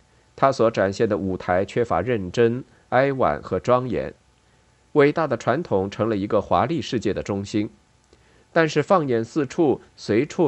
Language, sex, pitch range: Chinese, male, 100-135 Hz